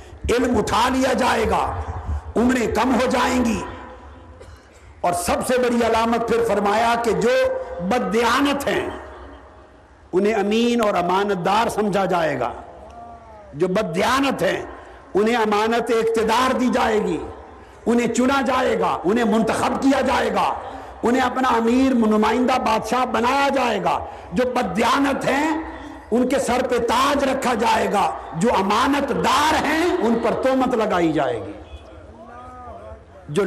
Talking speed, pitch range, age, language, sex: 140 wpm, 215-265 Hz, 50-69, Urdu, male